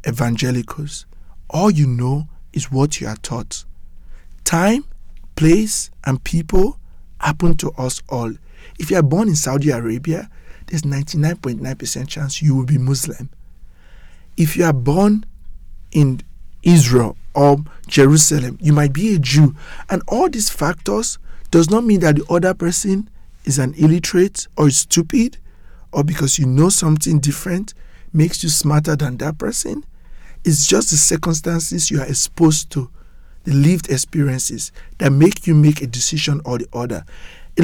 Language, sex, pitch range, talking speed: English, male, 125-165 Hz, 150 wpm